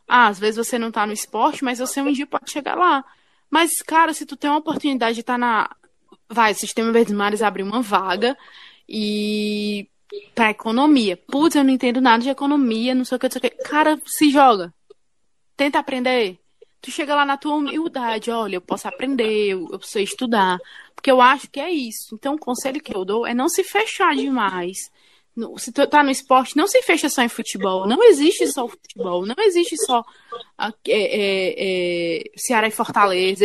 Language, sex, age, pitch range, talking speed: Portuguese, female, 20-39, 220-290 Hz, 210 wpm